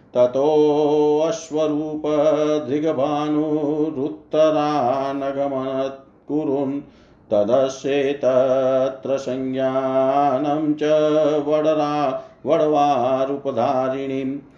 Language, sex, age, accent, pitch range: Hindi, male, 50-69, native, 135-150 Hz